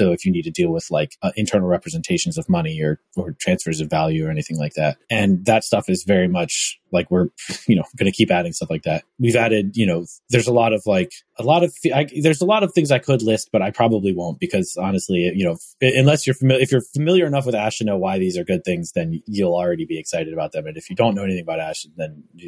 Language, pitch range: English, 95-130 Hz